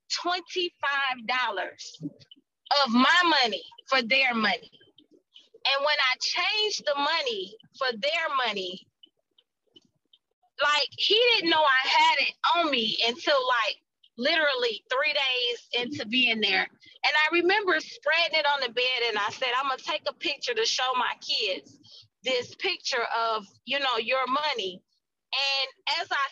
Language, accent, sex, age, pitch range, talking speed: English, American, female, 30-49, 275-365 Hz, 145 wpm